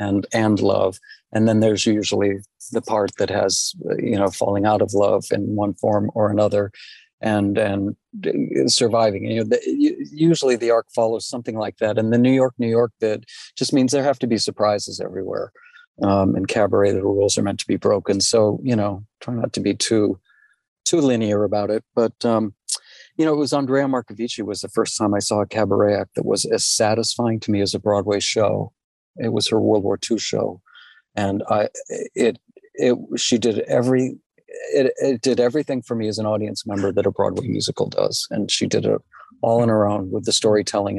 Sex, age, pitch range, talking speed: male, 40-59, 100-125 Hz, 205 wpm